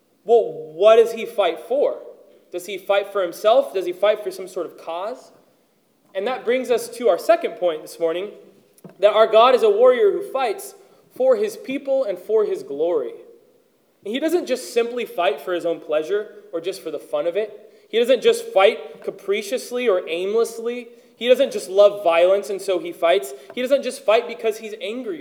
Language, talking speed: English, 200 wpm